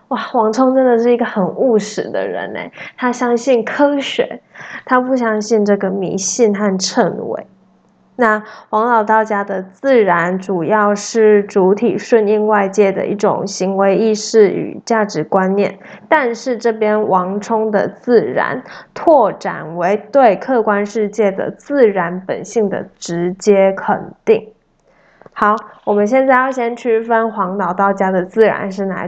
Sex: female